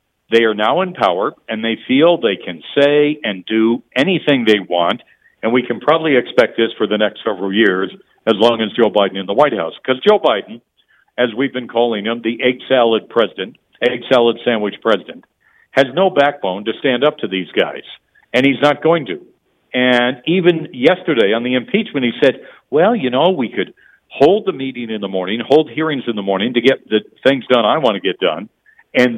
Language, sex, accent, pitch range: English, male, American, 110-140 Hz